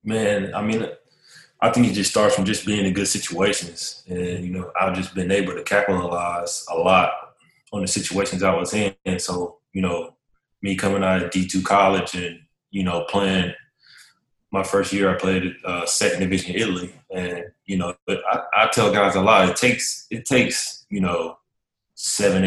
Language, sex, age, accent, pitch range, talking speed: English, male, 20-39, American, 90-95 Hz, 190 wpm